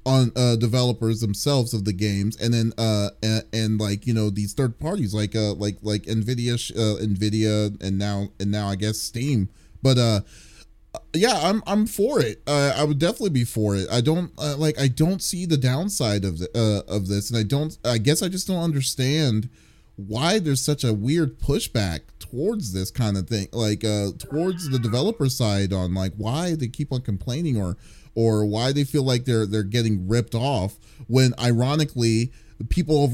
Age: 30-49